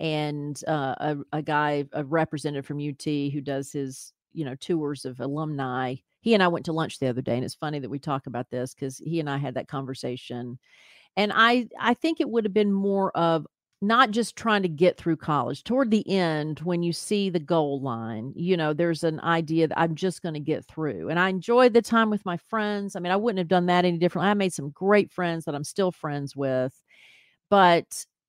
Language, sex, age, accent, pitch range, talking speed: English, female, 40-59, American, 145-195 Hz, 225 wpm